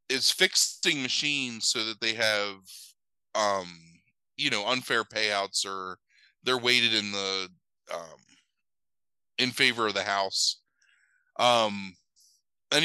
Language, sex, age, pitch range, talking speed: English, male, 20-39, 95-125 Hz, 115 wpm